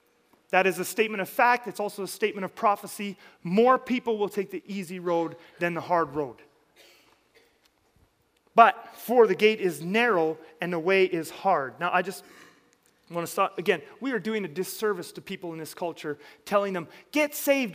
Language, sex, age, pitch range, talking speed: English, male, 30-49, 190-250 Hz, 185 wpm